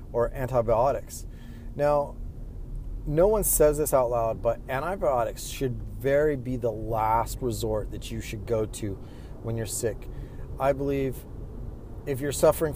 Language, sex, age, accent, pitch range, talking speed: English, male, 30-49, American, 110-135 Hz, 140 wpm